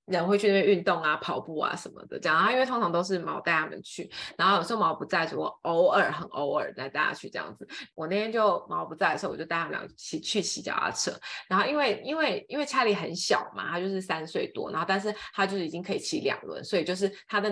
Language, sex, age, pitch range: Chinese, female, 20-39, 190-235 Hz